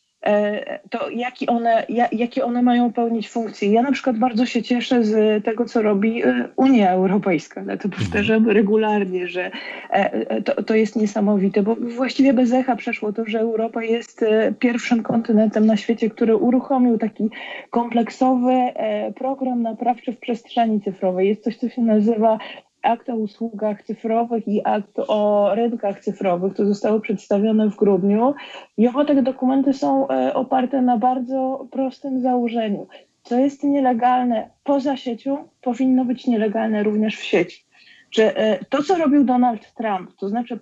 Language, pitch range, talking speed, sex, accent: Polish, 215-250 Hz, 145 wpm, female, native